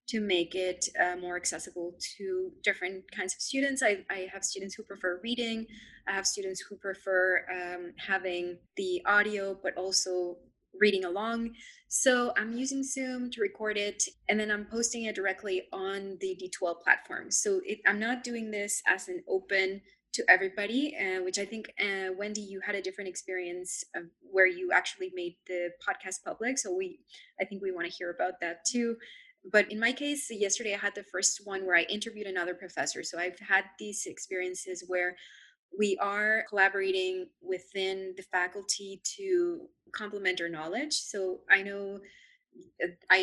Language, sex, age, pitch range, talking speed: English, female, 20-39, 185-230 Hz, 175 wpm